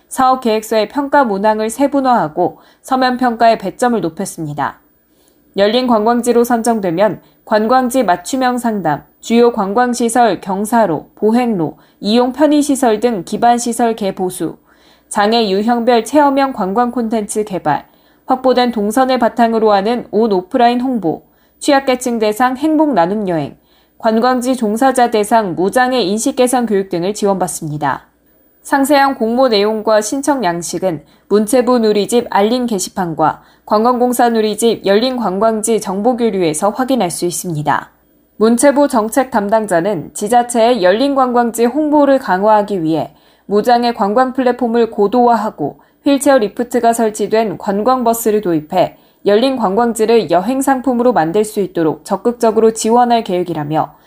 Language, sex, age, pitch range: Korean, female, 20-39, 200-250 Hz